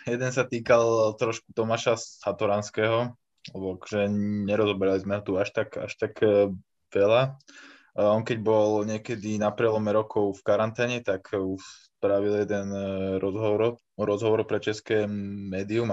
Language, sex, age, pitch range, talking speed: Slovak, male, 20-39, 95-110 Hz, 130 wpm